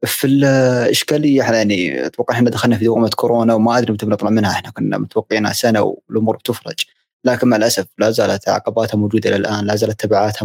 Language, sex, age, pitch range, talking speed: Arabic, male, 20-39, 105-120 Hz, 180 wpm